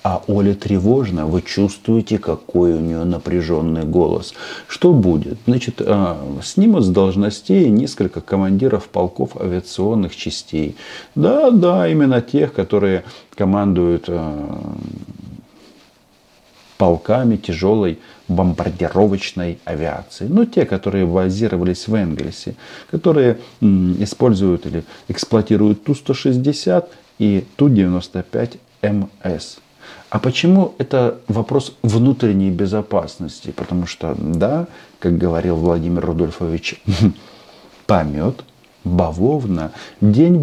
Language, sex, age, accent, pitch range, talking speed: Russian, male, 40-59, native, 90-120 Hz, 90 wpm